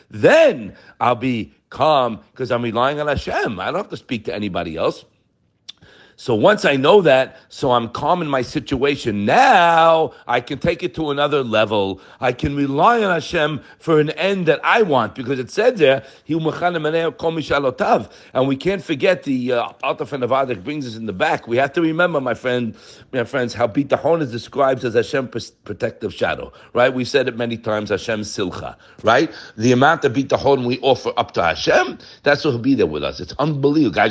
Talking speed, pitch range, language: 190 wpm, 125-175 Hz, English